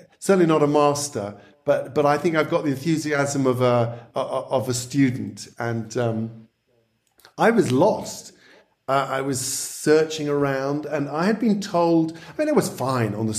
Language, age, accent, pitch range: English, 50-69, British, 125-155 Hz